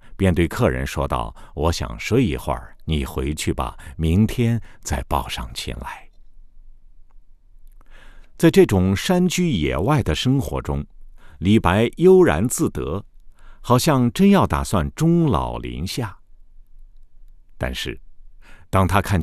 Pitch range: 75-125 Hz